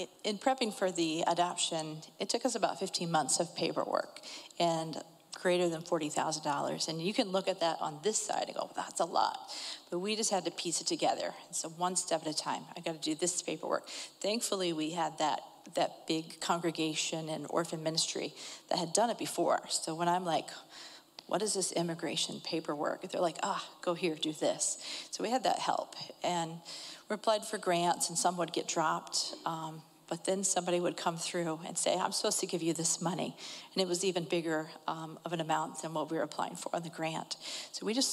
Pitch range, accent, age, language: 165-185 Hz, American, 40-59, English